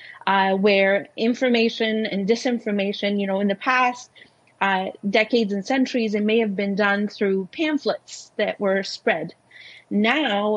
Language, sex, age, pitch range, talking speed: English, female, 30-49, 195-230 Hz, 140 wpm